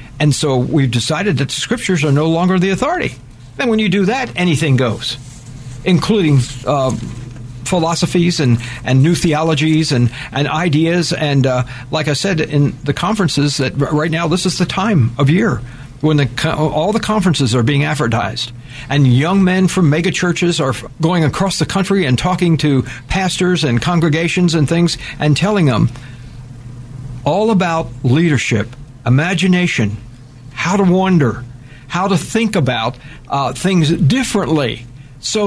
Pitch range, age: 125-175 Hz, 60-79